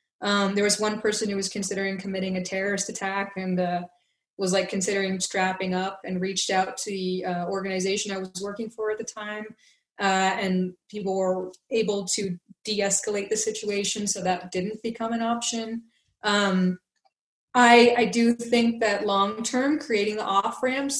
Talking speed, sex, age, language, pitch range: 170 wpm, female, 20-39, English, 195-235 Hz